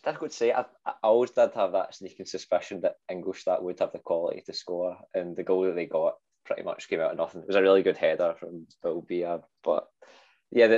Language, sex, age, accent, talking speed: English, male, 20-39, British, 240 wpm